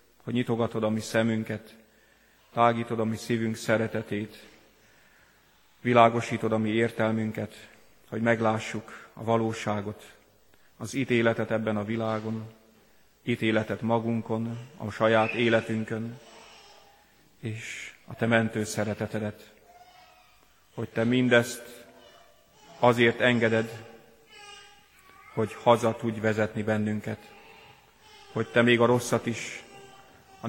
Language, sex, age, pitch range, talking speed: Hungarian, male, 40-59, 110-120 Hz, 100 wpm